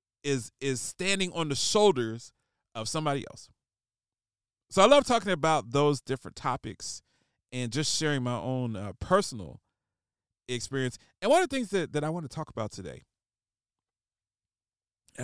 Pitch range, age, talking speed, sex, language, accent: 115-150 Hz, 40-59, 155 wpm, male, English, American